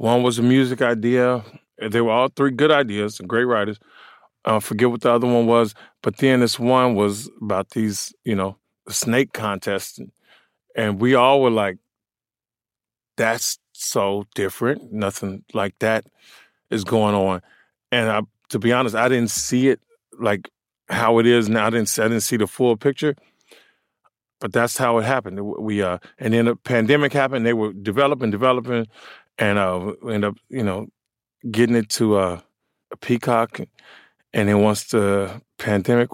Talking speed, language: 170 wpm, English